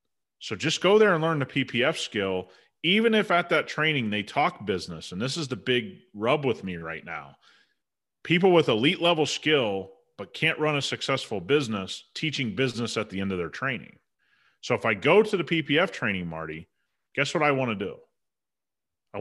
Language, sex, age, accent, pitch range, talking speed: English, male, 30-49, American, 110-160 Hz, 195 wpm